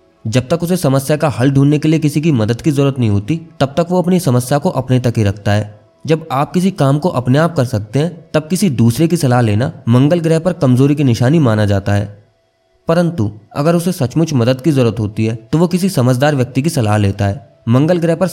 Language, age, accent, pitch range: Hindi, 20-39, native, 110-160 Hz